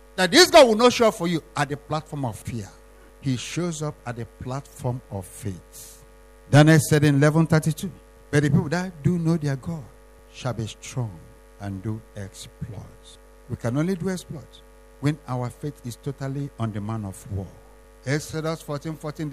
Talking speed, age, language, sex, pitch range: 180 wpm, 60-79, English, male, 110-155 Hz